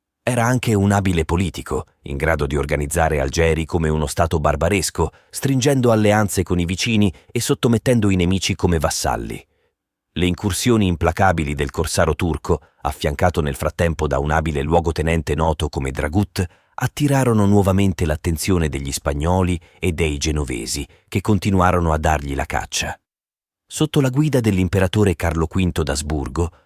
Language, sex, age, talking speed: Italian, male, 30-49, 140 wpm